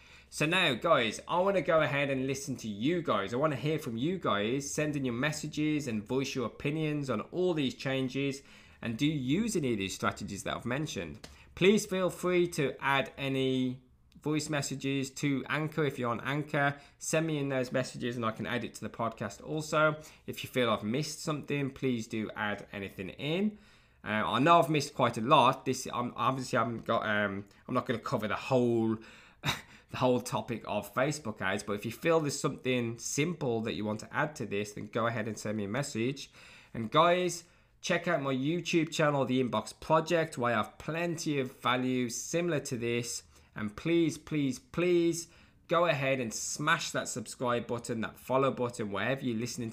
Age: 20-39